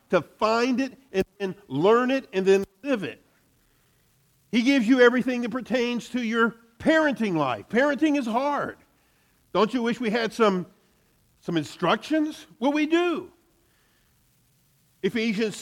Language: English